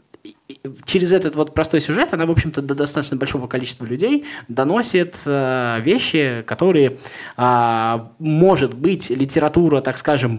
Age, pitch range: 20-39, 110-150 Hz